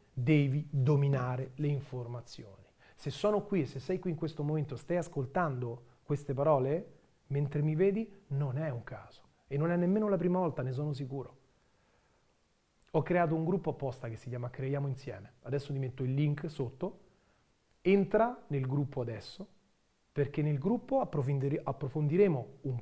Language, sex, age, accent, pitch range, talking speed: Italian, male, 40-59, native, 130-175 Hz, 155 wpm